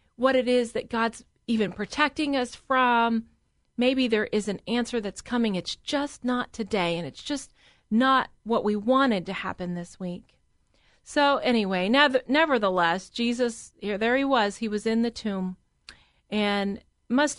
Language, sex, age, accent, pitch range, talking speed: English, female, 40-59, American, 230-305 Hz, 155 wpm